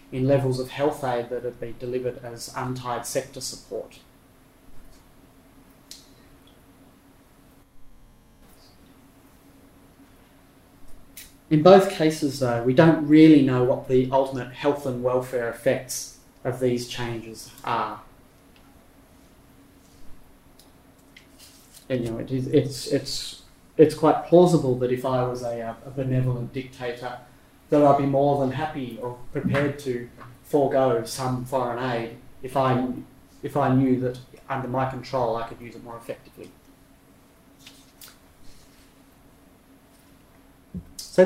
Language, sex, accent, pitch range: English, male, Australian, 125-140 Hz